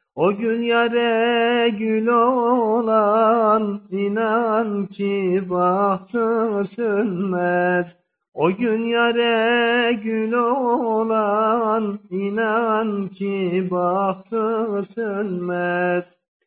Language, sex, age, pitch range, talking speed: Turkish, male, 50-69, 200-235 Hz, 65 wpm